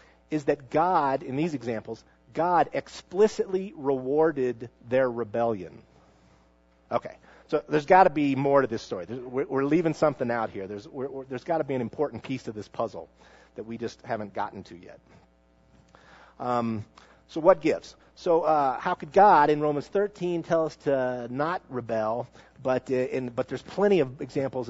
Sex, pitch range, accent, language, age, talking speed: male, 120-155 Hz, American, English, 50-69, 165 wpm